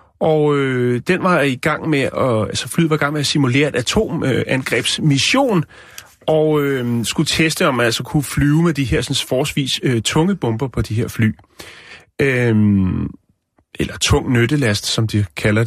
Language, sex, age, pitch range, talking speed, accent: Danish, male, 30-49, 115-145 Hz, 175 wpm, native